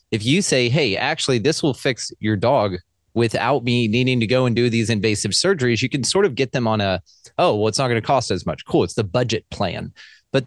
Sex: male